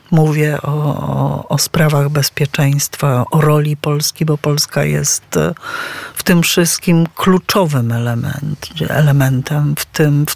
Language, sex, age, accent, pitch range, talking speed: Polish, female, 50-69, native, 140-165 Hz, 120 wpm